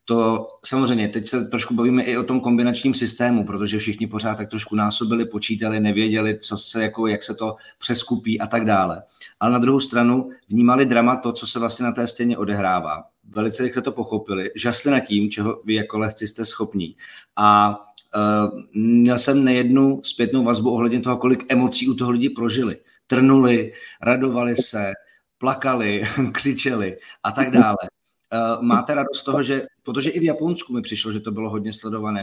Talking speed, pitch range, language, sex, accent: 180 wpm, 110-125 Hz, Czech, male, native